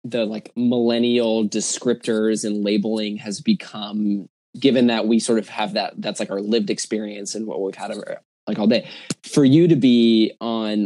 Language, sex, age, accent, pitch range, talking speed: English, male, 20-39, American, 105-120 Hz, 175 wpm